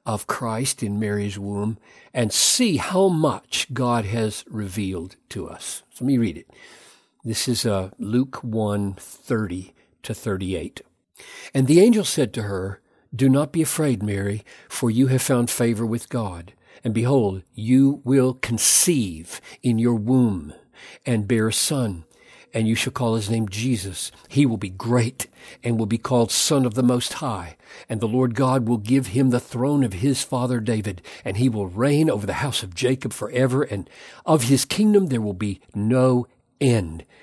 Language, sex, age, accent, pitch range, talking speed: English, male, 60-79, American, 105-130 Hz, 175 wpm